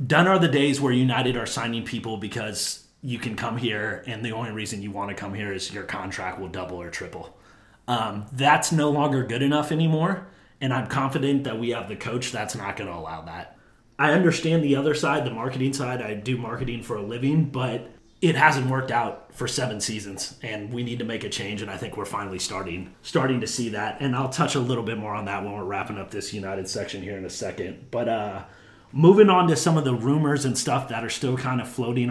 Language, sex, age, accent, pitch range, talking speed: English, male, 30-49, American, 110-145 Hz, 235 wpm